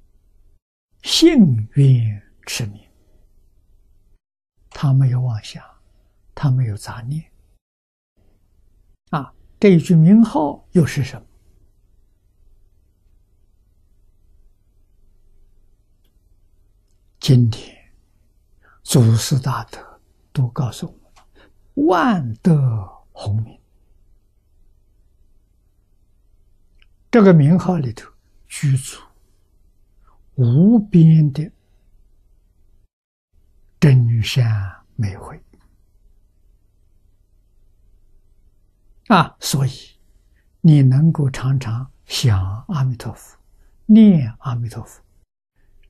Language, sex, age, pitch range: Chinese, male, 60-79, 95-125 Hz